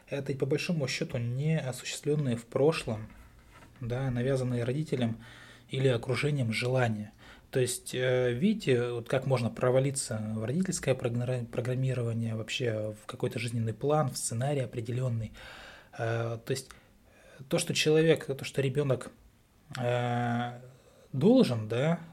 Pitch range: 115-140 Hz